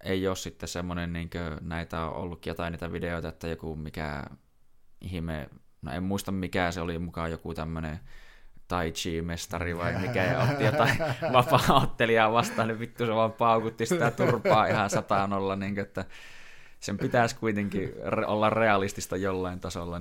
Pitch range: 85-100 Hz